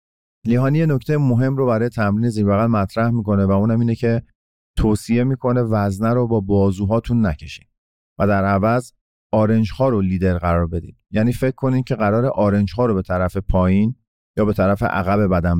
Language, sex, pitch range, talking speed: Persian, male, 100-125 Hz, 180 wpm